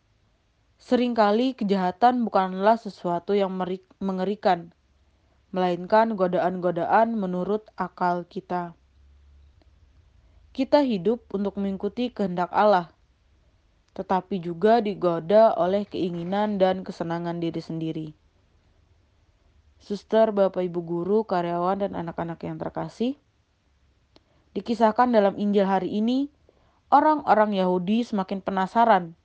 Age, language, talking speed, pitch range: 30-49, Indonesian, 90 wpm, 165-210 Hz